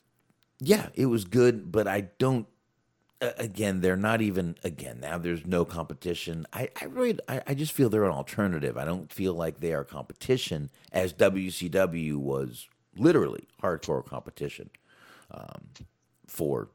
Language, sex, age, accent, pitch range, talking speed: English, male, 40-59, American, 80-110 Hz, 145 wpm